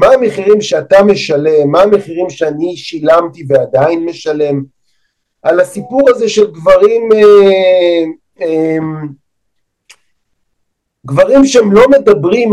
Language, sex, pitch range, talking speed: Hebrew, male, 160-235 Hz, 100 wpm